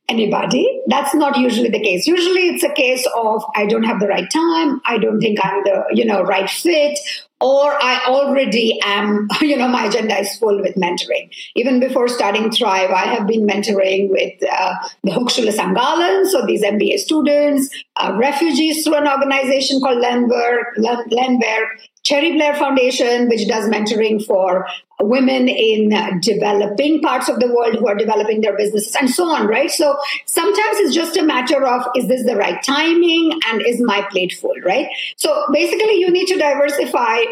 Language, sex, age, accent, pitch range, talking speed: English, female, 50-69, Indian, 220-295 Hz, 175 wpm